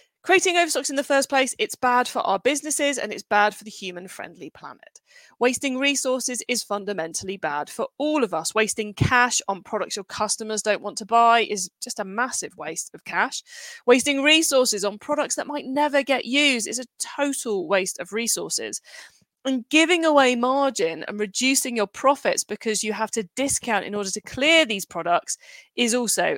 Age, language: 20-39, English